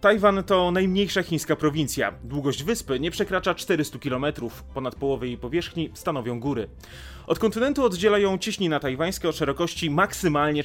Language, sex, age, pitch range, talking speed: Polish, male, 30-49, 130-175 Hz, 140 wpm